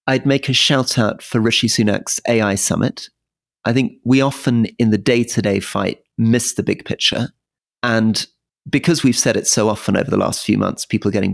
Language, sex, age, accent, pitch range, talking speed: English, male, 40-59, British, 100-125 Hz, 195 wpm